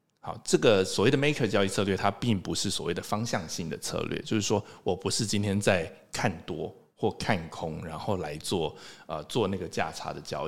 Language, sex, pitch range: Chinese, male, 95-130 Hz